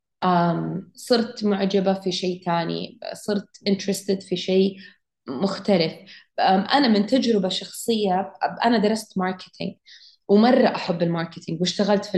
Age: 20-39